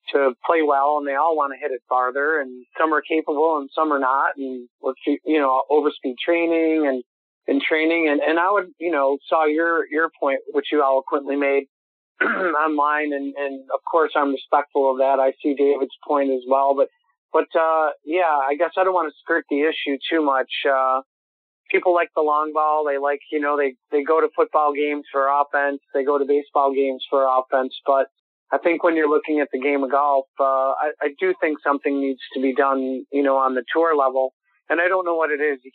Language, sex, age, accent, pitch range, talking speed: English, male, 30-49, American, 135-155 Hz, 220 wpm